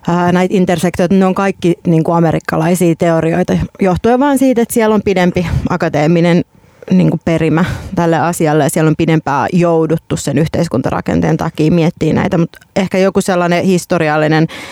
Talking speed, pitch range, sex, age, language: 155 wpm, 155-175 Hz, female, 30-49, Finnish